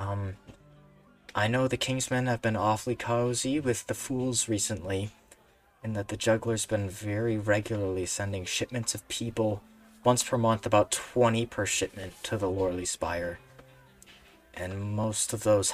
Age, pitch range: 20-39, 95-125 Hz